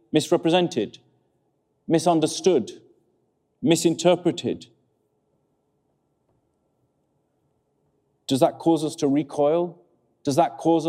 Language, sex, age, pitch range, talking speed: English, male, 40-59, 130-175 Hz, 65 wpm